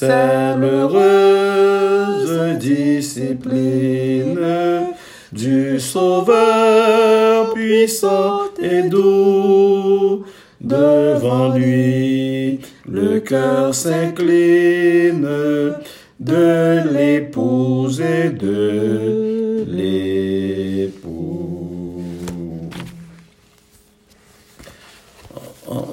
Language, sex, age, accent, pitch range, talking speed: French, male, 50-69, French, 105-155 Hz, 40 wpm